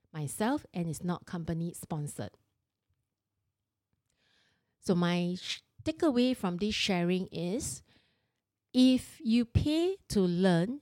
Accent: Malaysian